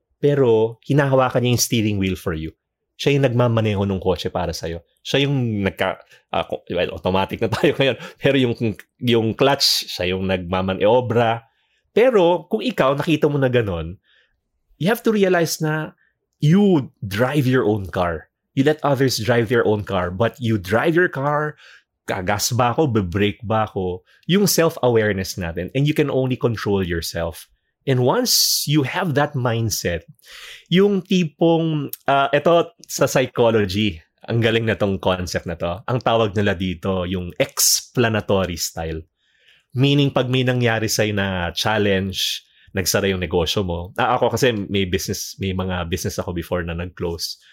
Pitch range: 95-140 Hz